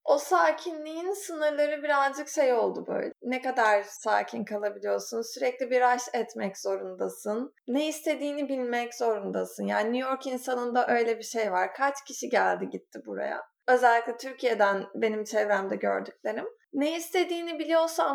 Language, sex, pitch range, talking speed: Turkish, female, 230-295 Hz, 135 wpm